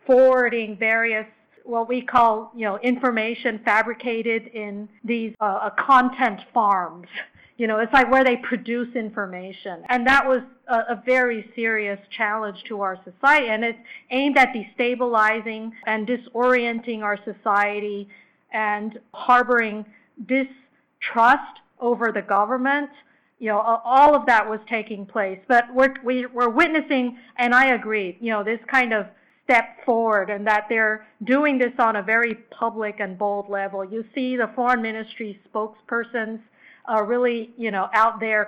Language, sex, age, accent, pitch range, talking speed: English, female, 50-69, American, 215-250 Hz, 145 wpm